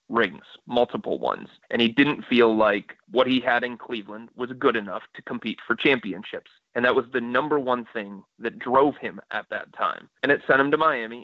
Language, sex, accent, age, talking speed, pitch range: English, male, American, 30-49, 210 wpm, 110-130 Hz